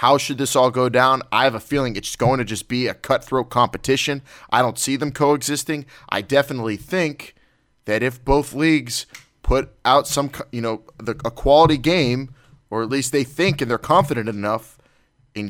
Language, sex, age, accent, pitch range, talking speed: English, male, 30-49, American, 110-140 Hz, 190 wpm